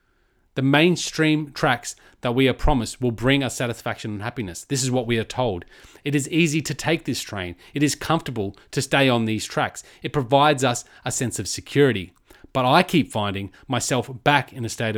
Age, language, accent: 30-49, English, Australian